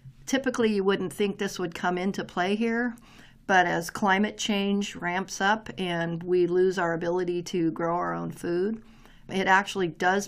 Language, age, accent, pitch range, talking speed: English, 50-69, American, 170-200 Hz, 170 wpm